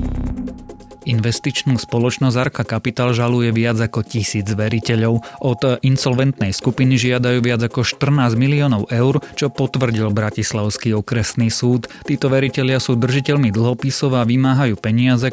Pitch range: 110-130 Hz